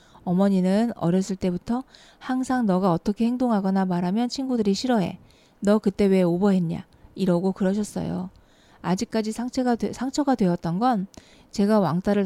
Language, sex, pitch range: Korean, female, 180-220 Hz